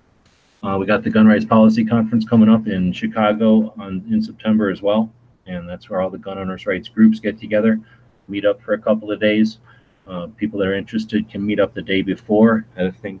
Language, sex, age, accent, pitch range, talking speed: English, male, 30-49, American, 95-115 Hz, 225 wpm